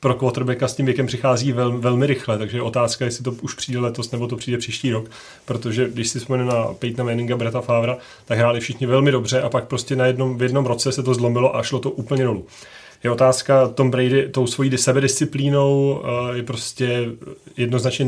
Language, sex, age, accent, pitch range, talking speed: Czech, male, 30-49, native, 115-125 Hz, 210 wpm